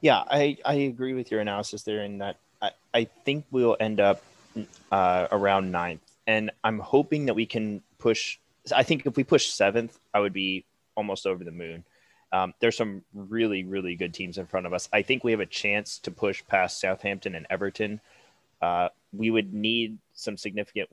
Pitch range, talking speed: 90-110 Hz, 195 wpm